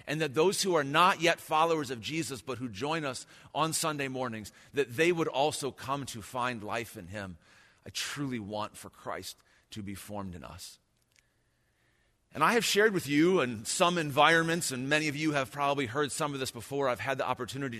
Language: English